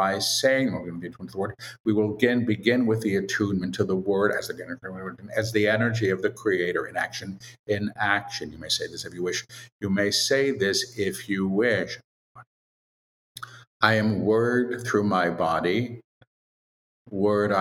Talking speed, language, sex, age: 145 wpm, English, male, 50-69